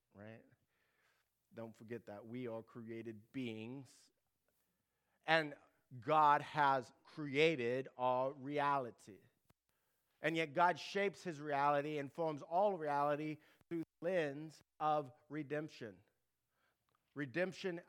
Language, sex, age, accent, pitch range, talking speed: English, male, 50-69, American, 135-175 Hz, 100 wpm